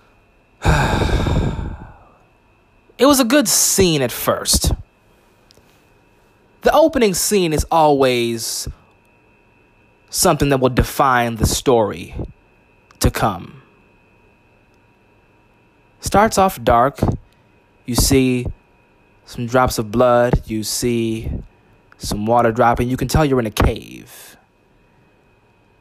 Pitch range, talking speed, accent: 105-135 Hz, 95 wpm, American